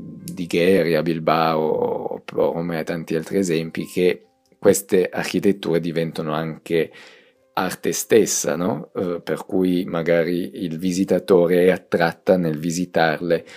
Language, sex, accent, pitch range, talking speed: Italian, male, native, 80-95 Hz, 115 wpm